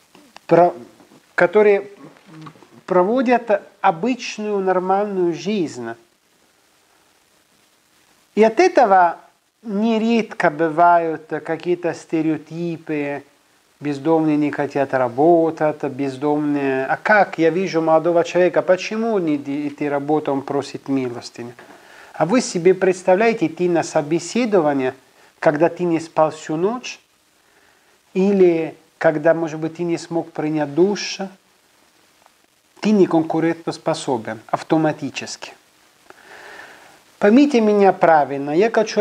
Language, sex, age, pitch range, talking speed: Russian, male, 40-59, 145-190 Hz, 95 wpm